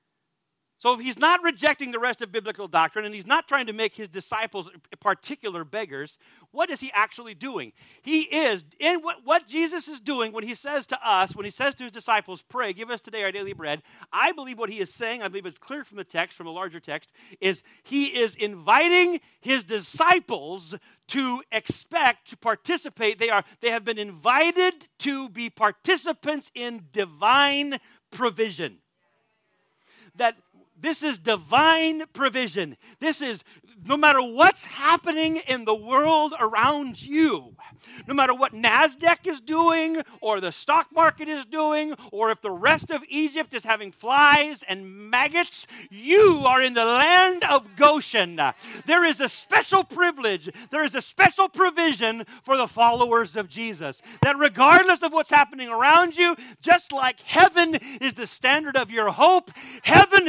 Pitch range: 220-315 Hz